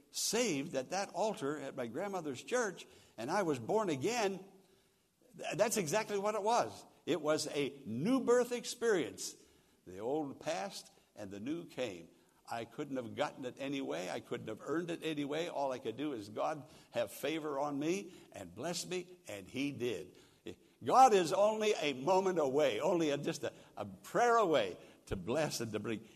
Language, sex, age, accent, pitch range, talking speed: English, male, 60-79, American, 125-170 Hz, 175 wpm